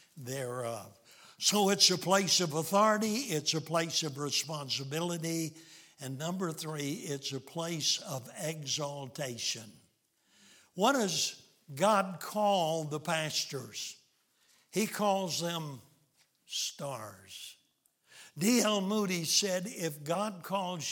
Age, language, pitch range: 60-79, English, 140-180 Hz